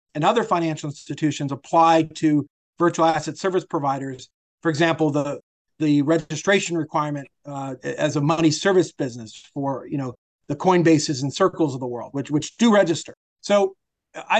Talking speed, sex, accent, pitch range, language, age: 160 wpm, male, American, 155-190 Hz, English, 40-59